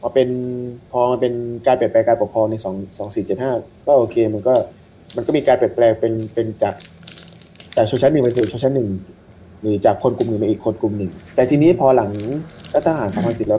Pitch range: 110-140 Hz